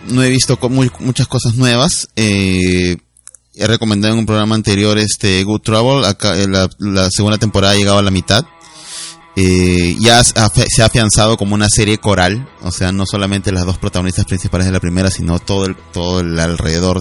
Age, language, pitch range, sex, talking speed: 30-49, Spanish, 85-105 Hz, male, 190 wpm